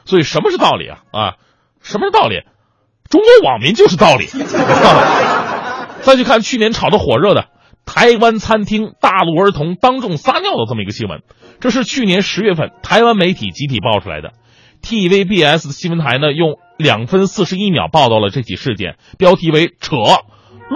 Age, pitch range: 30-49, 145-230 Hz